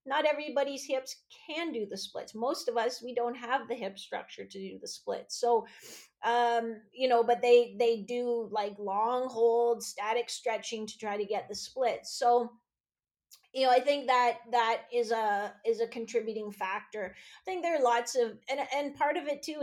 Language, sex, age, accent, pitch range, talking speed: English, female, 30-49, American, 210-250 Hz, 195 wpm